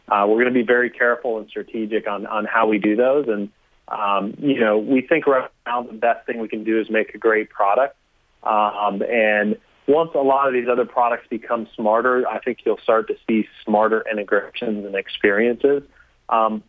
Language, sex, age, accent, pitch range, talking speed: English, male, 30-49, American, 105-120 Hz, 200 wpm